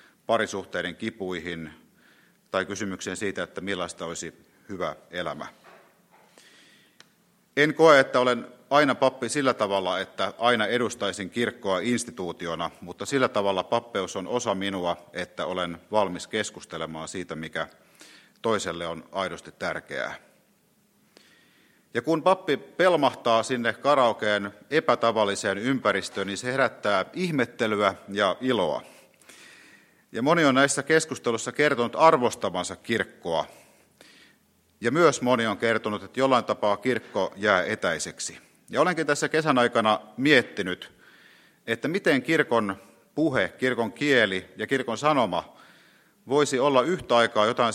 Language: Finnish